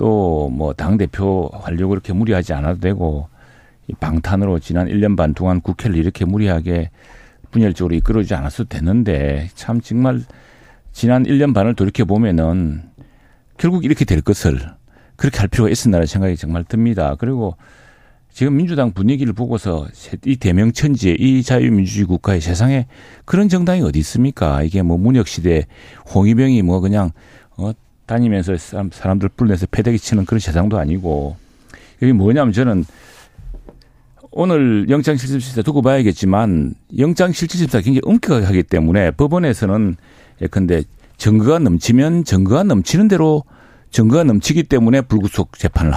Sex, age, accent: male, 40-59, native